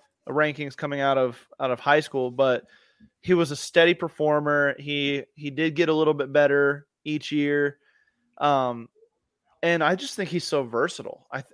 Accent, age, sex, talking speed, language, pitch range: American, 20-39, male, 170 wpm, English, 140-165 Hz